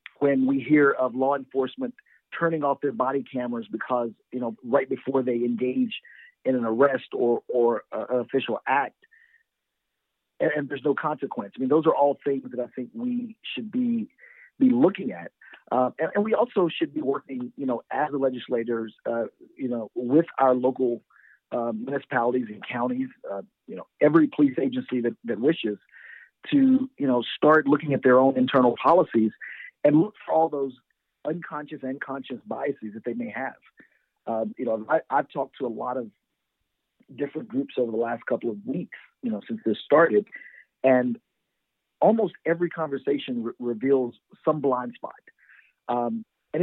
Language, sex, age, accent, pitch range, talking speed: English, male, 50-69, American, 125-160 Hz, 175 wpm